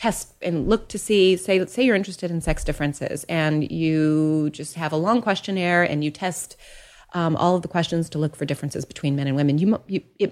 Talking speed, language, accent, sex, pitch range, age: 225 wpm, English, American, female, 145-185 Hz, 30-49